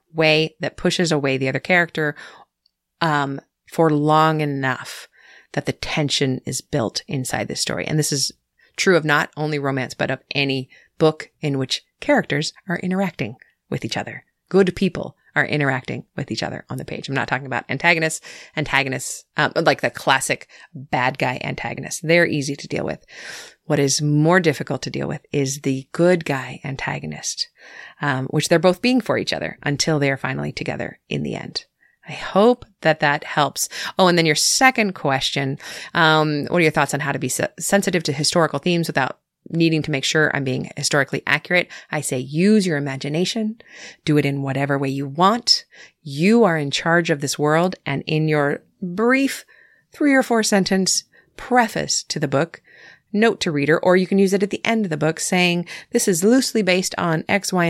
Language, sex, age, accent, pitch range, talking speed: English, female, 30-49, American, 145-185 Hz, 185 wpm